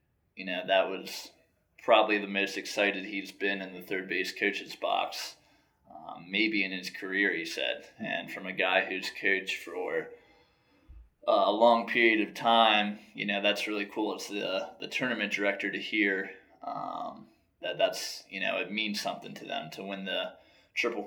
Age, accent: 20-39, American